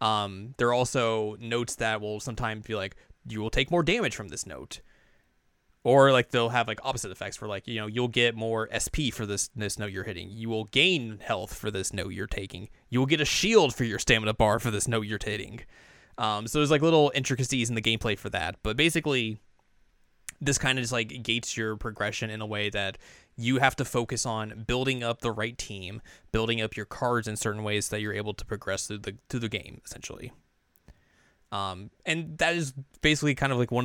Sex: male